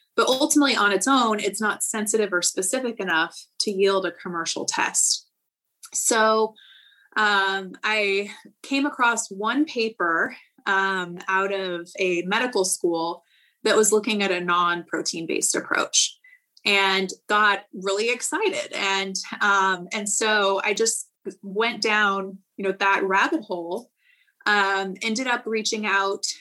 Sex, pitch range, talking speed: female, 195-225 Hz, 130 wpm